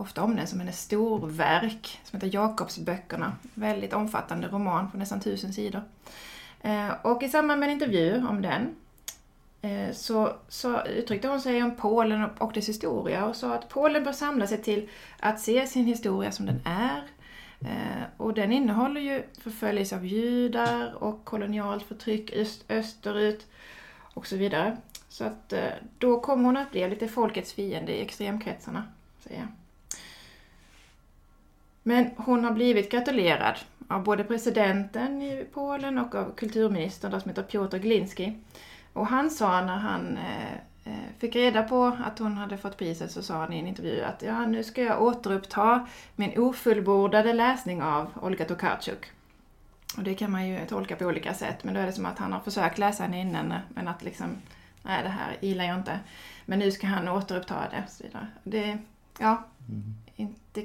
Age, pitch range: 30-49, 195-230 Hz